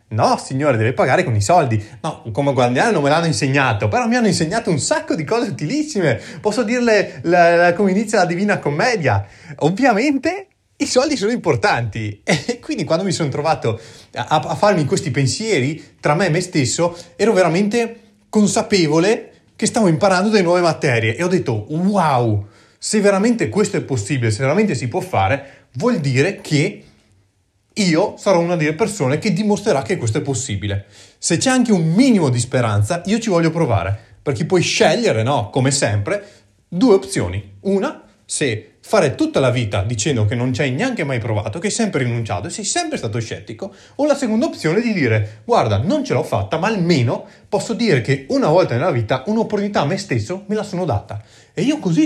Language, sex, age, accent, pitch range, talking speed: Italian, male, 30-49, native, 120-205 Hz, 190 wpm